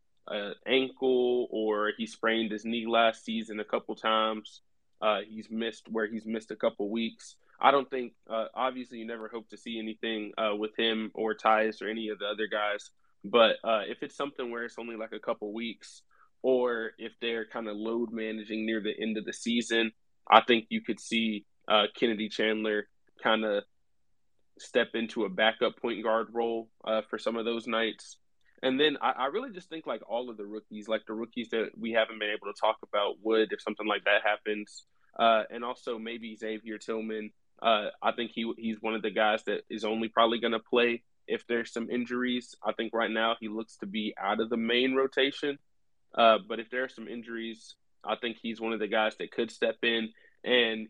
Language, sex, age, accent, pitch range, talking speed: English, male, 20-39, American, 110-120 Hz, 210 wpm